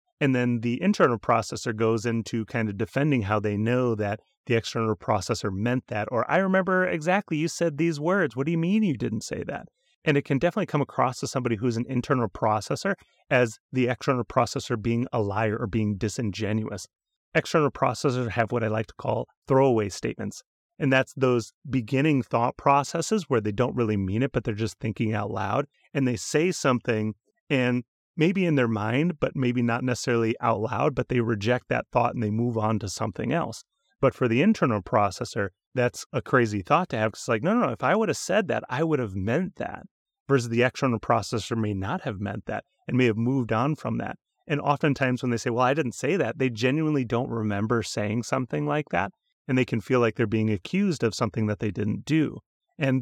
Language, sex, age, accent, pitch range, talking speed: English, male, 30-49, American, 110-140 Hz, 215 wpm